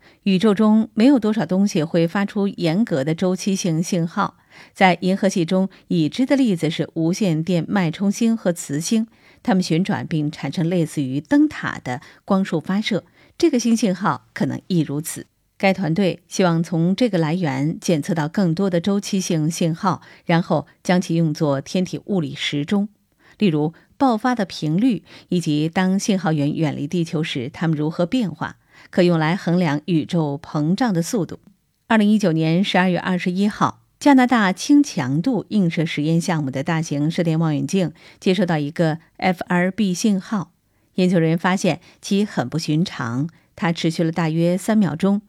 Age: 50-69